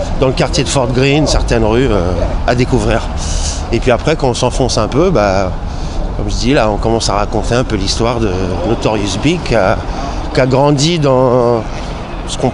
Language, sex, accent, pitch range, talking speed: French, male, French, 85-140 Hz, 195 wpm